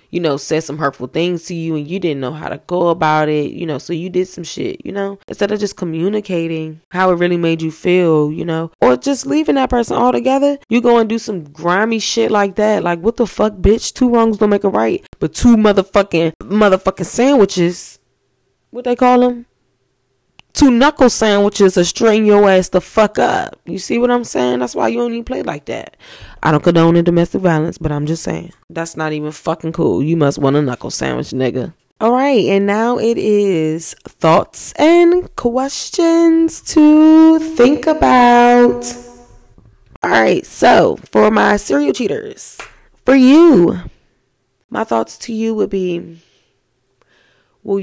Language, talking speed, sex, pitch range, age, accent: English, 180 wpm, female, 160-235 Hz, 20-39, American